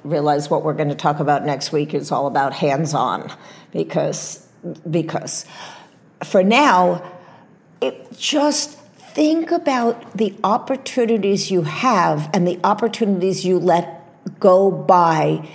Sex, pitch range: female, 165-220 Hz